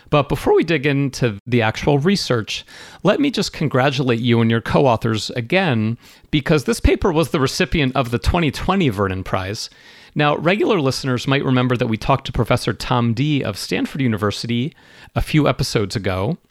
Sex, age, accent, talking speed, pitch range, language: male, 30-49, American, 170 wpm, 110-145 Hz, English